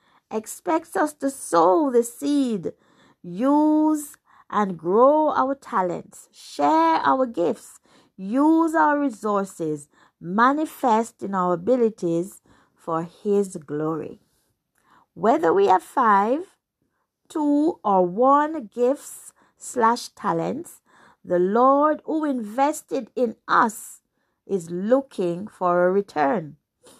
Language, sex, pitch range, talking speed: English, female, 190-285 Hz, 100 wpm